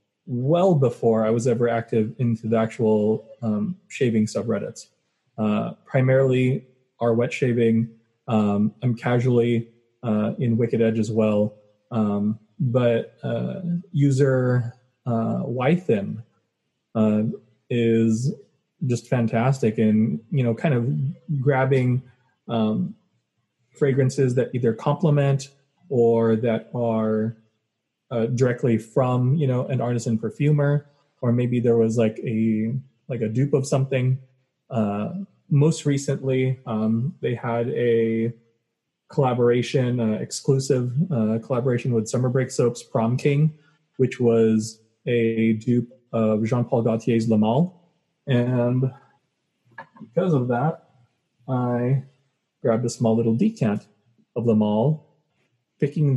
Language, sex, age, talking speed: English, male, 20-39, 115 wpm